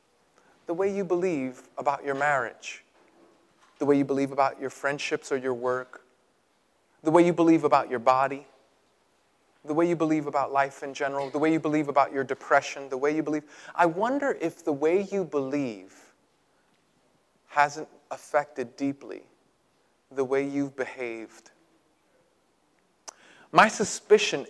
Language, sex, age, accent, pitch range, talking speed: English, male, 30-49, American, 140-190 Hz, 145 wpm